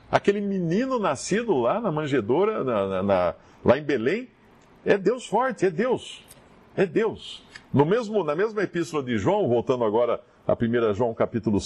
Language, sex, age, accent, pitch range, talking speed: English, male, 50-69, Brazilian, 120-185 Hz, 165 wpm